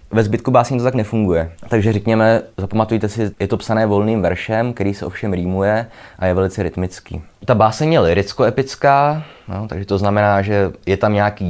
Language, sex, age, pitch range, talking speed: Czech, male, 20-39, 90-110 Hz, 190 wpm